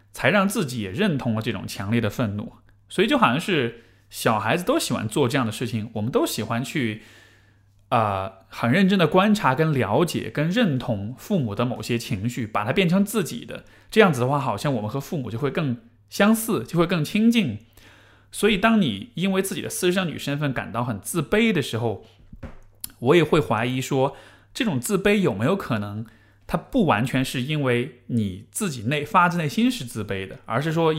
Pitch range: 110-170 Hz